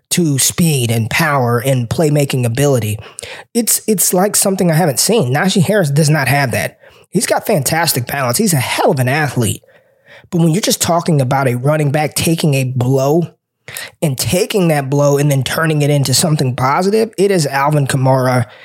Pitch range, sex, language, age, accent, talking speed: 135-170 Hz, male, English, 20-39, American, 185 wpm